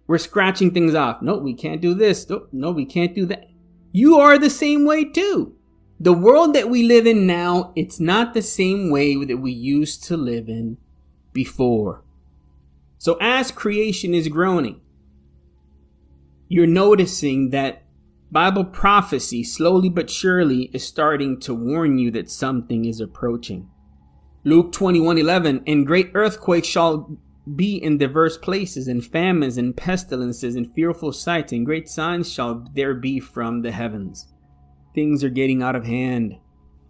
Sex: male